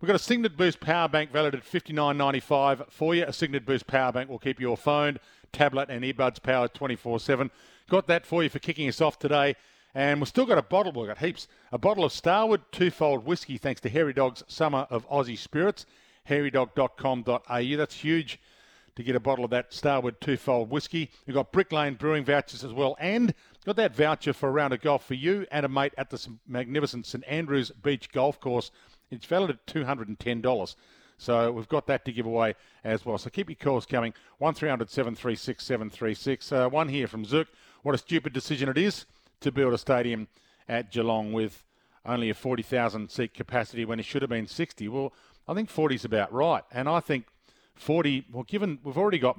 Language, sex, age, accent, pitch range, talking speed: English, male, 50-69, Australian, 120-150 Hz, 200 wpm